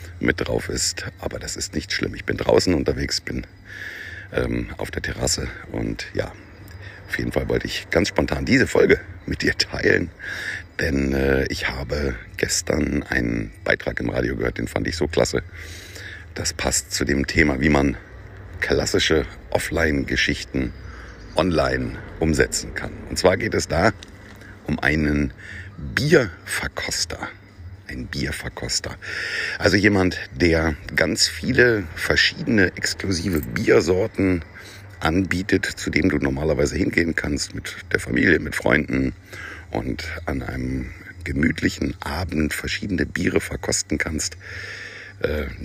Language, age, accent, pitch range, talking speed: German, 60-79, German, 75-95 Hz, 130 wpm